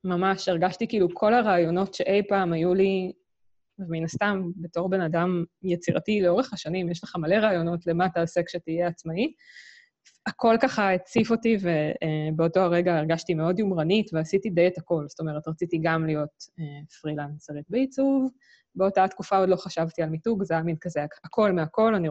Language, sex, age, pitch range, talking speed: Hebrew, female, 20-39, 165-205 Hz, 160 wpm